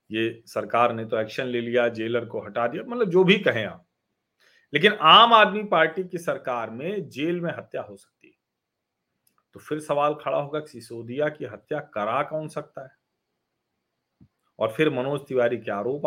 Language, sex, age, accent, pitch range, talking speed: Hindi, male, 40-59, native, 115-150 Hz, 180 wpm